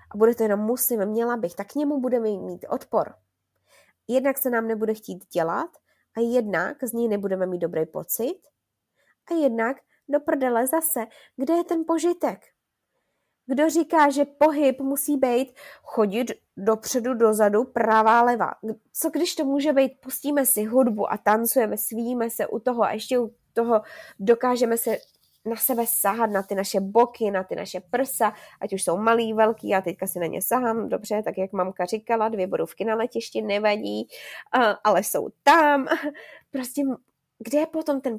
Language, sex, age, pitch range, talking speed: Czech, female, 20-39, 210-270 Hz, 170 wpm